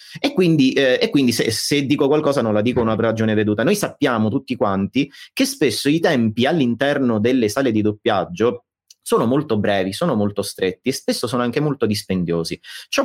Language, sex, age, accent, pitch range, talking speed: Italian, male, 30-49, native, 115-185 Hz, 180 wpm